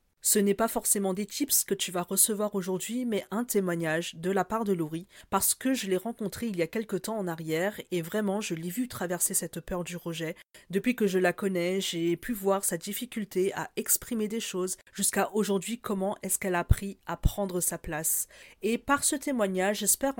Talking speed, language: 210 wpm, French